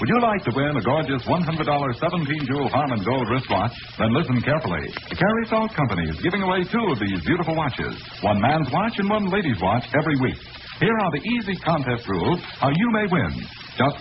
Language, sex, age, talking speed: English, male, 60-79, 205 wpm